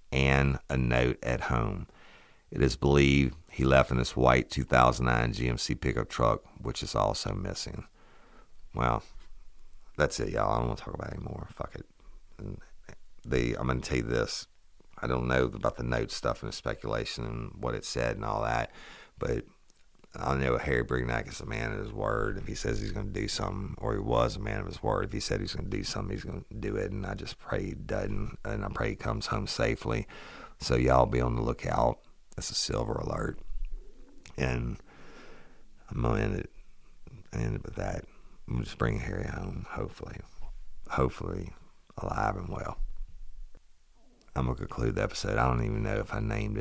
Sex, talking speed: male, 200 wpm